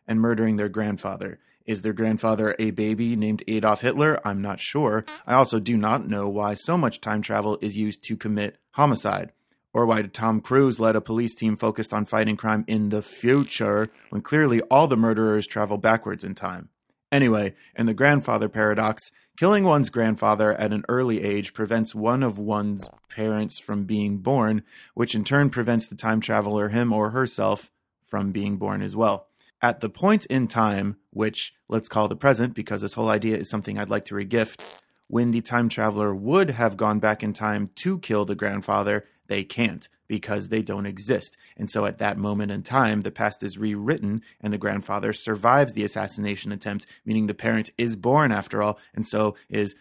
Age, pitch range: 20-39, 105-115 Hz